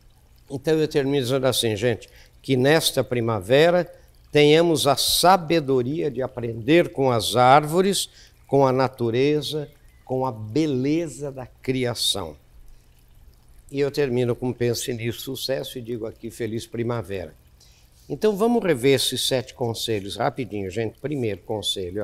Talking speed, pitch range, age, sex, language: 130 wpm, 115-155 Hz, 60-79, male, Portuguese